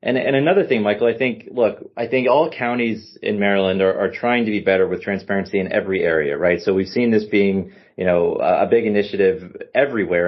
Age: 30-49